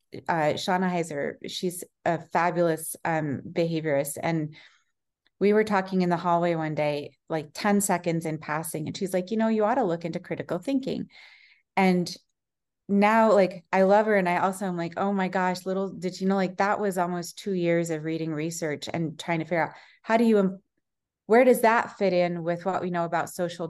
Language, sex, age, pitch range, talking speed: English, female, 30-49, 160-195 Hz, 205 wpm